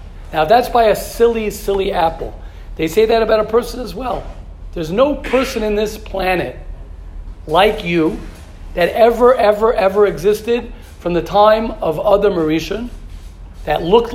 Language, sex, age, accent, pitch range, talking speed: English, male, 40-59, American, 180-235 Hz, 155 wpm